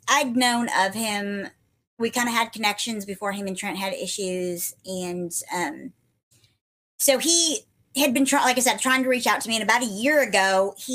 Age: 30-49